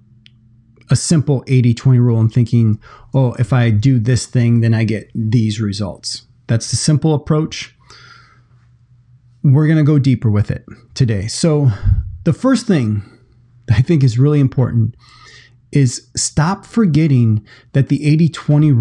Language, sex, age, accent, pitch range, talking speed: English, male, 30-49, American, 115-140 Hz, 140 wpm